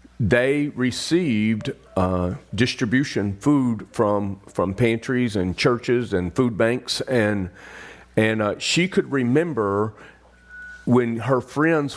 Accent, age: American, 40-59